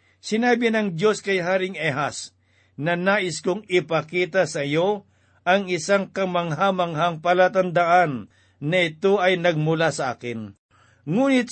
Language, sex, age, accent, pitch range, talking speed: Filipino, male, 50-69, native, 145-185 Hz, 120 wpm